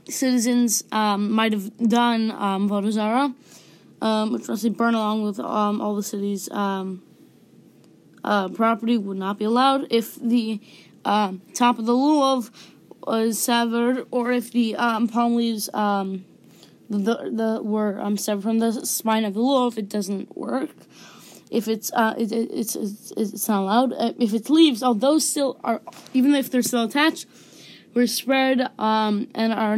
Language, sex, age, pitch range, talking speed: English, female, 20-39, 210-245 Hz, 170 wpm